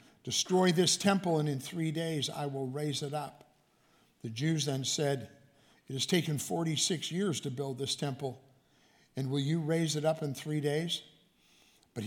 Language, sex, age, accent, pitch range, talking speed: English, male, 60-79, American, 135-160 Hz, 175 wpm